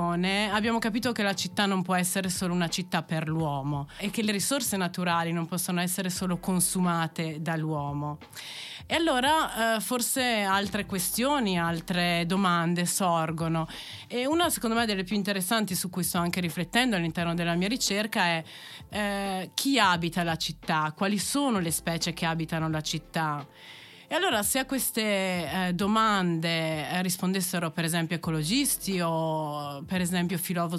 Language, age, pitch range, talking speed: Italian, 30-49, 170-210 Hz, 150 wpm